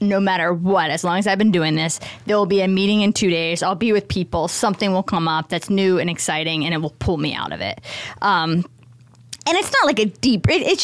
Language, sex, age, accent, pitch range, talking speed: English, female, 20-39, American, 175-235 Hz, 255 wpm